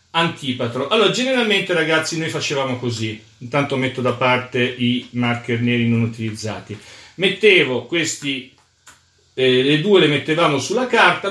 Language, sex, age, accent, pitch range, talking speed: Italian, male, 50-69, native, 130-170 Hz, 135 wpm